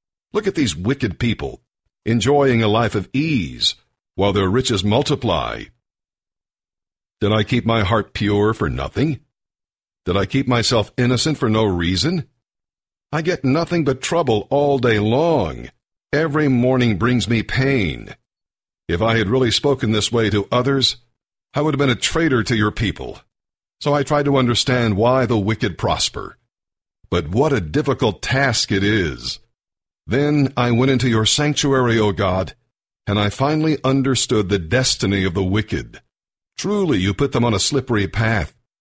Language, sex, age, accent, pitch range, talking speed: English, male, 60-79, American, 105-135 Hz, 160 wpm